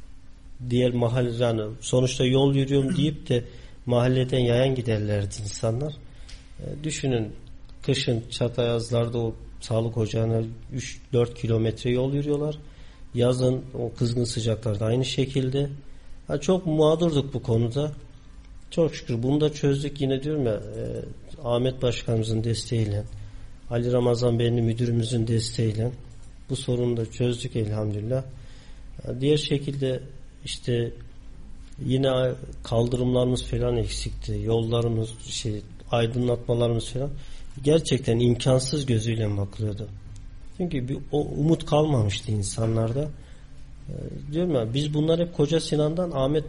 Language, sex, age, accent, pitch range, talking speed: Turkish, male, 50-69, native, 110-135 Hz, 110 wpm